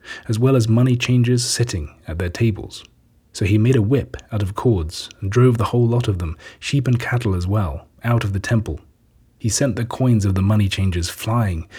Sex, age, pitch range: male, 30-49, 95-120 Hz